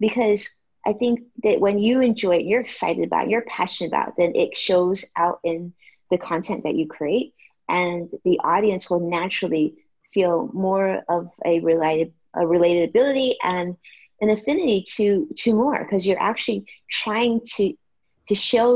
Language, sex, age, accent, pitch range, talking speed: English, female, 30-49, American, 170-225 Hz, 165 wpm